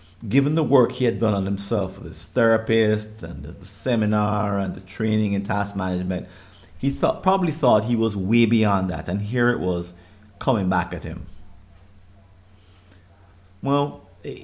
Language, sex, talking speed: English, male, 160 wpm